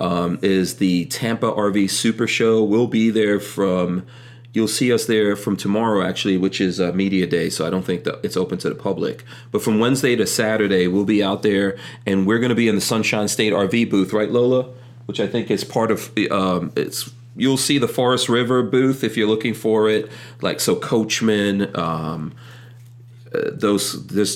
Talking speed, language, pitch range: 205 wpm, English, 100-120 Hz